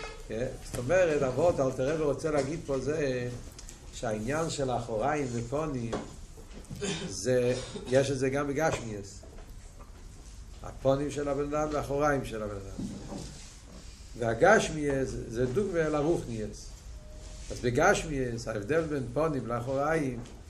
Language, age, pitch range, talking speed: Hebrew, 60-79, 110-150 Hz, 115 wpm